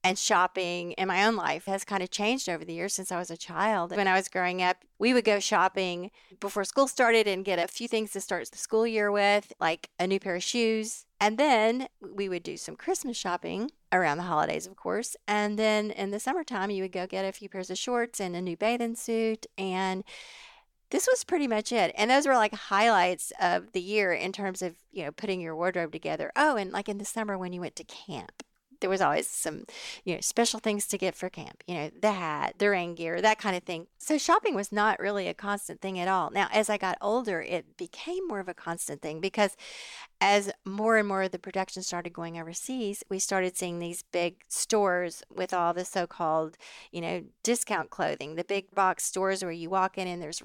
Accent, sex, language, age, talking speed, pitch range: American, female, English, 40-59, 230 wpm, 180-220 Hz